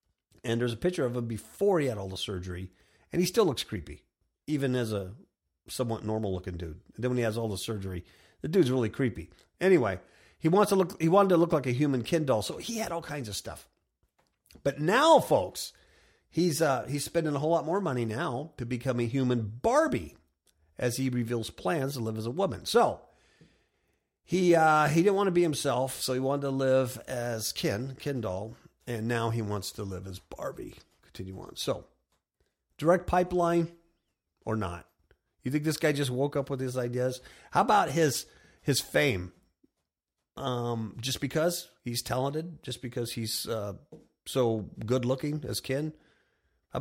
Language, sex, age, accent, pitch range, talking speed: English, male, 50-69, American, 105-150 Hz, 185 wpm